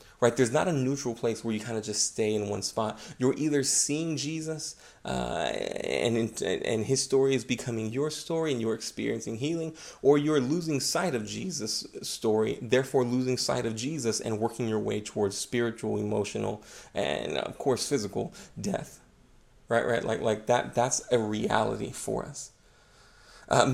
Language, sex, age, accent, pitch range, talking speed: English, male, 30-49, American, 110-140 Hz, 170 wpm